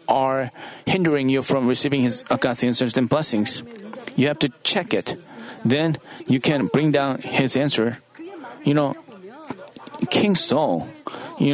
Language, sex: Korean, male